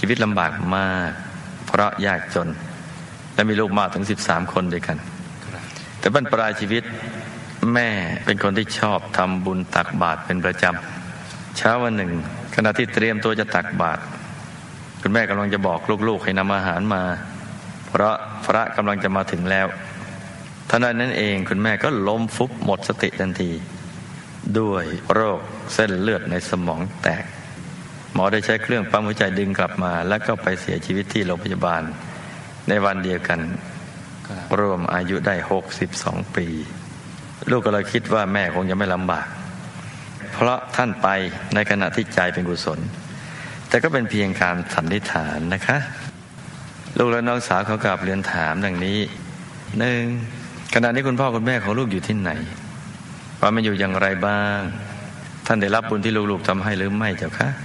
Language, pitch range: Thai, 95-115 Hz